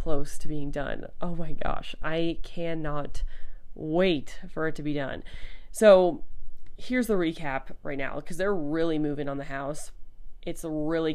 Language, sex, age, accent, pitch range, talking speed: English, female, 20-39, American, 150-180 Hz, 155 wpm